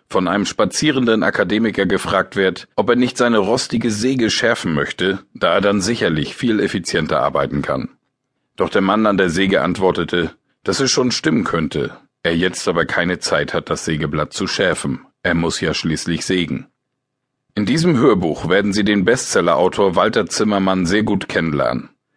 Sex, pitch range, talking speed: male, 95-125 Hz, 165 wpm